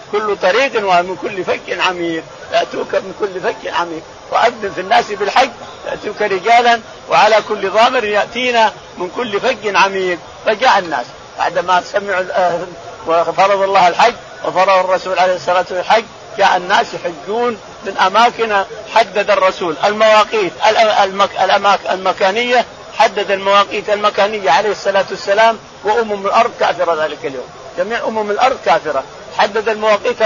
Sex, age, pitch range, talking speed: male, 50-69, 185-225 Hz, 130 wpm